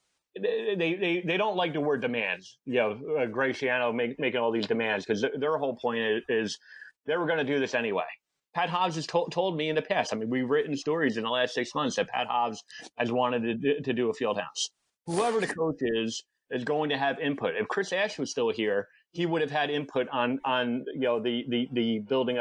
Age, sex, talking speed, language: 30-49, male, 240 wpm, English